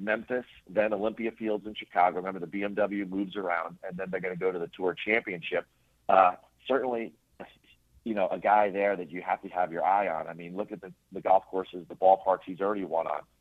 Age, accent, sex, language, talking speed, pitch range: 40-59, American, male, English, 225 wpm, 95-110 Hz